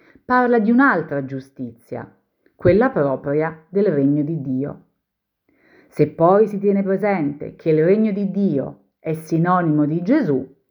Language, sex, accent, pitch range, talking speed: Italian, female, native, 150-215 Hz, 135 wpm